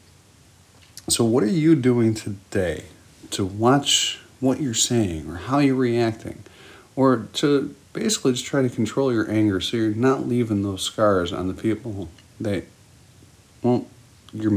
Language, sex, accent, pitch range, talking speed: English, male, American, 95-125 Hz, 145 wpm